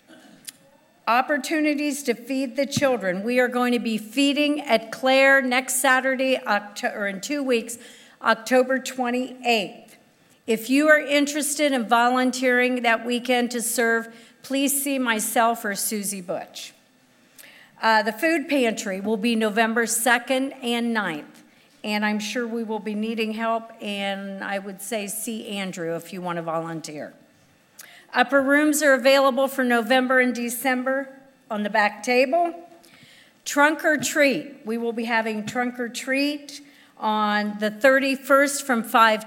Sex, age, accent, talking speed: female, 50-69, American, 145 wpm